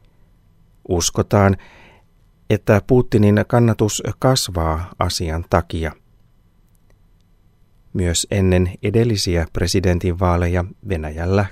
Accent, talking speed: native, 65 wpm